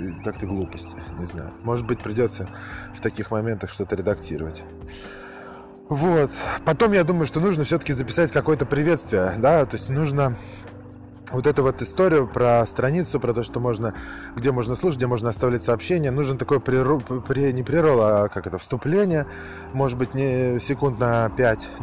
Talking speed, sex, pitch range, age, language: 160 wpm, male, 110-145 Hz, 20-39, Russian